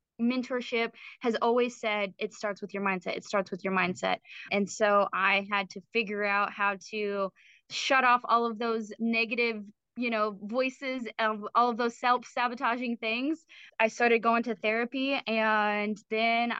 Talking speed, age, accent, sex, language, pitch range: 165 wpm, 20-39, American, female, English, 210-250 Hz